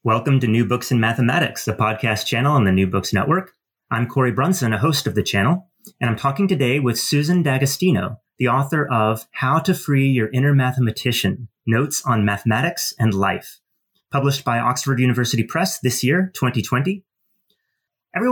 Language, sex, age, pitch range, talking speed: English, male, 30-49, 110-155 Hz, 170 wpm